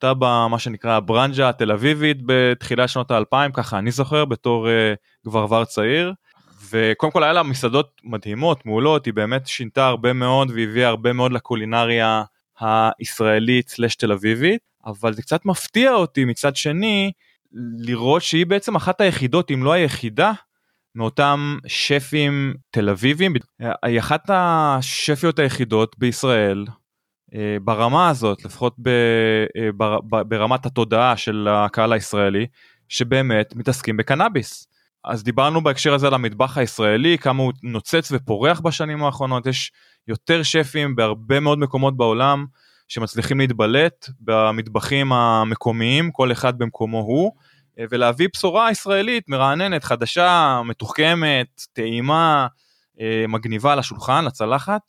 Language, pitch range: Hebrew, 115-145 Hz